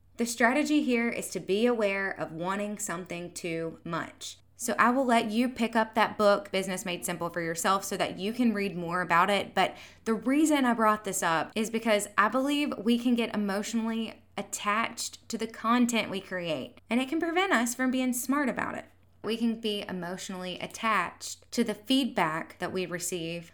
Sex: female